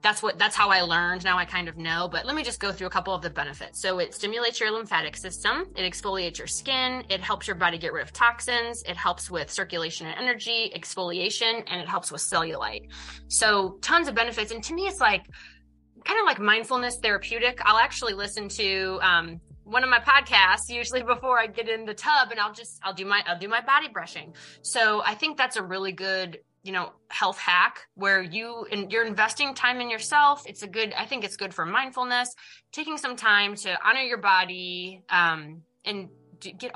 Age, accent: 20-39, American